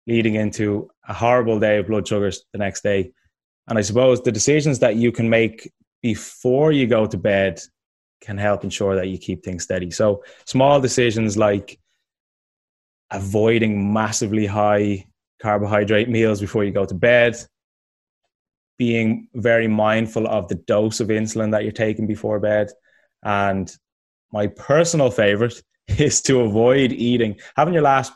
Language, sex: English, male